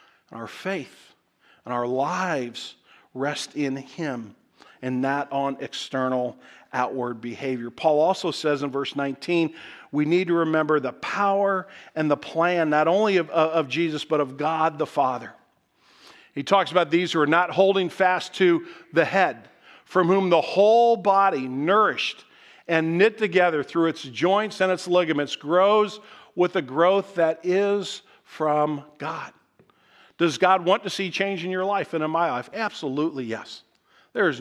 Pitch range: 145-185 Hz